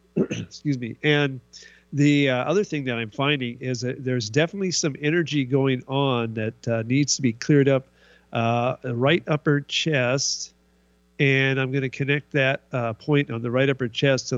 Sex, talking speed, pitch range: male, 180 wpm, 110-140 Hz